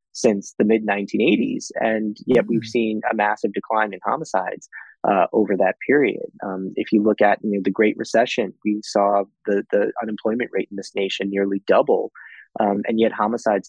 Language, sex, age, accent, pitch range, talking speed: English, male, 20-39, American, 100-115 Hz, 180 wpm